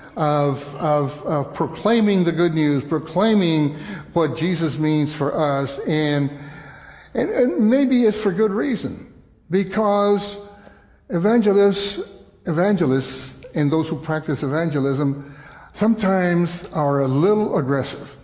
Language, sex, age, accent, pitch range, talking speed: English, male, 60-79, American, 140-175 Hz, 110 wpm